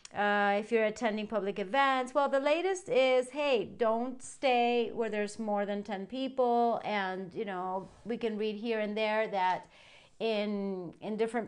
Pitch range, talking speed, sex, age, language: 200-240 Hz, 165 wpm, female, 40-59, English